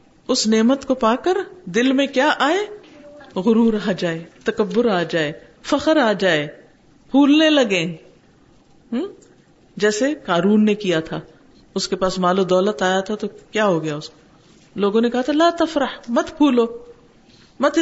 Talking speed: 160 wpm